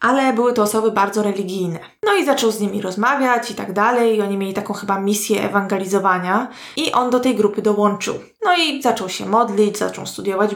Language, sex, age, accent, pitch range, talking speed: Polish, female, 20-39, native, 200-225 Hz, 195 wpm